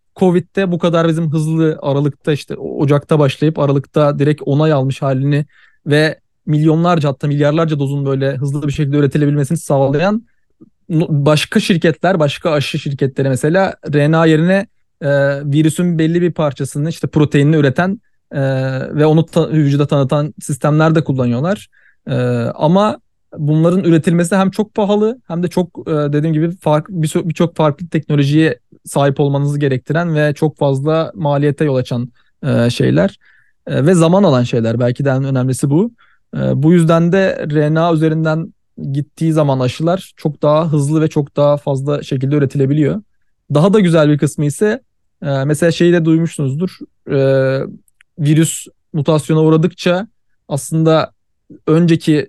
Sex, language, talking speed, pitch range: male, Turkish, 130 wpm, 145-165 Hz